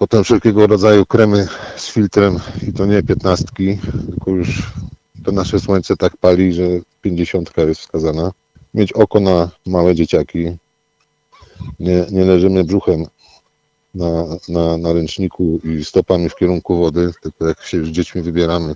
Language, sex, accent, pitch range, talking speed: Polish, male, native, 85-100 Hz, 145 wpm